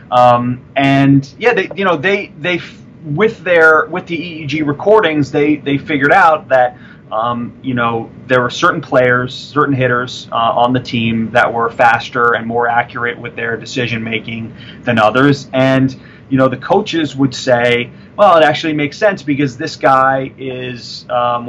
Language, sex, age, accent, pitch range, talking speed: English, male, 30-49, American, 125-150 Hz, 170 wpm